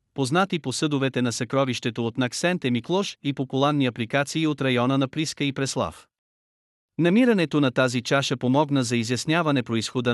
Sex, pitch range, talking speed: male, 120-155 Hz, 155 wpm